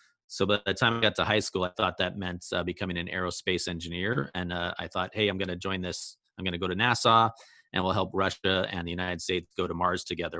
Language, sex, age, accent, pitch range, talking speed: English, male, 30-49, American, 90-100 Hz, 265 wpm